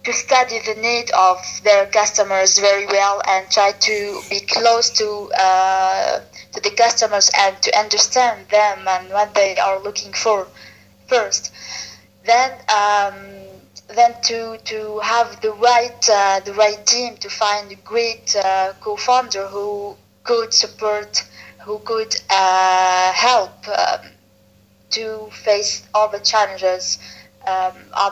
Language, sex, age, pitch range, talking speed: English, female, 20-39, 190-225 Hz, 135 wpm